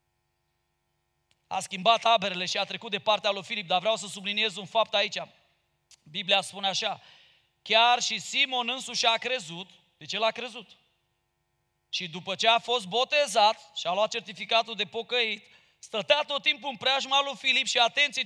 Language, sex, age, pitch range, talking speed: Romanian, male, 30-49, 185-235 Hz, 170 wpm